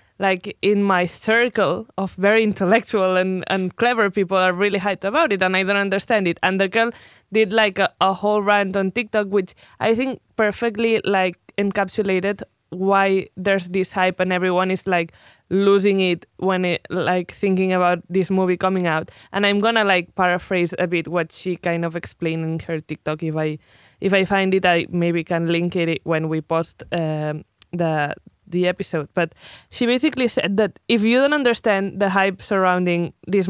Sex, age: female, 20-39